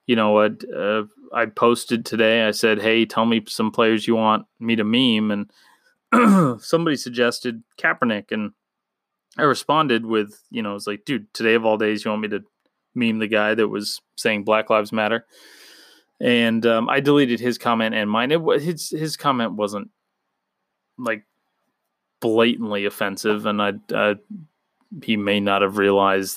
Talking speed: 170 wpm